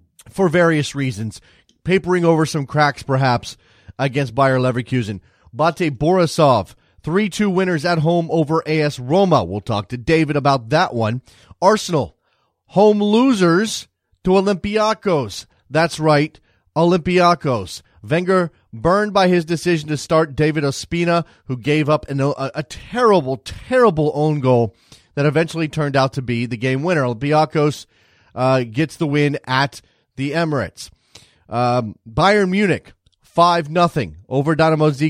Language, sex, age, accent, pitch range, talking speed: English, male, 30-49, American, 125-165 Hz, 135 wpm